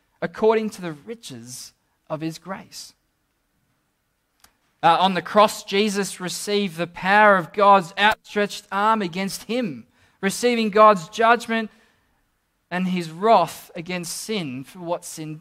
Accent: Australian